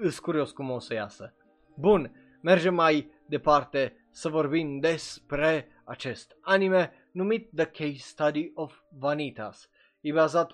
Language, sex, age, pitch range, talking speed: Romanian, male, 20-39, 130-175 Hz, 125 wpm